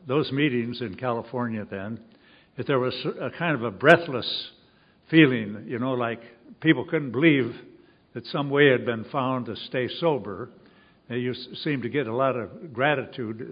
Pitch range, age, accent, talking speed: 115-145 Hz, 60-79, American, 165 wpm